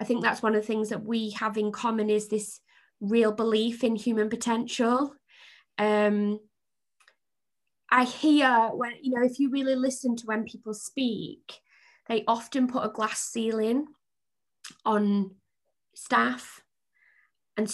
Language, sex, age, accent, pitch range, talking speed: English, female, 20-39, British, 205-245 Hz, 140 wpm